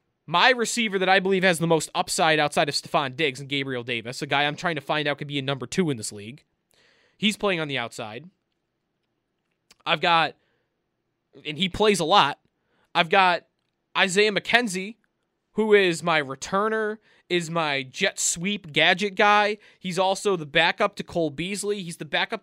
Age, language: 20-39, English